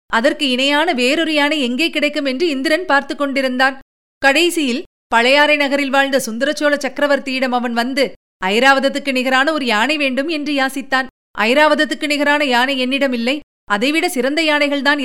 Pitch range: 260-305 Hz